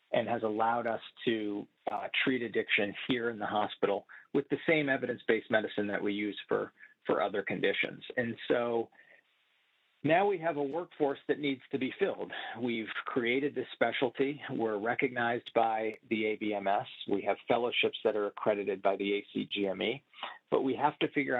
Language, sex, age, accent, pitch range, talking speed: English, male, 40-59, American, 110-140 Hz, 165 wpm